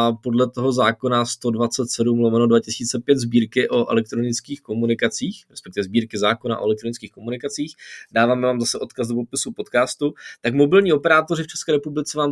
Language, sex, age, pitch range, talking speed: Czech, male, 20-39, 120-150 Hz, 145 wpm